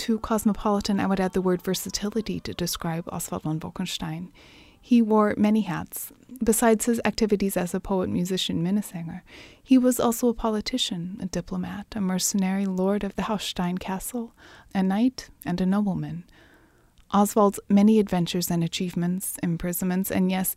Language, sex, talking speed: English, female, 150 wpm